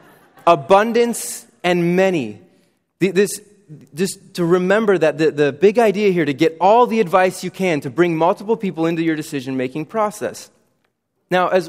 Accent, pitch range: American, 145-195 Hz